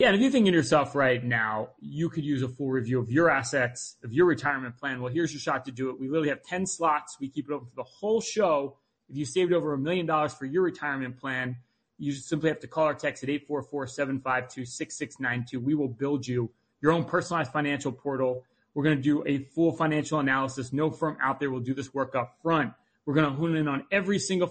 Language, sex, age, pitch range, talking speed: English, male, 30-49, 135-165 Hz, 235 wpm